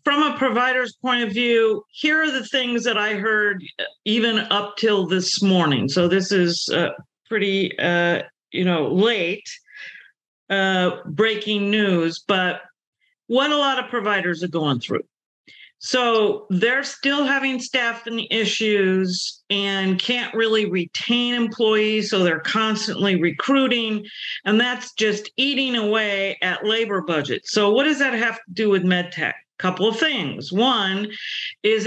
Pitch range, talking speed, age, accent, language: 185-235 Hz, 145 wpm, 50-69, American, English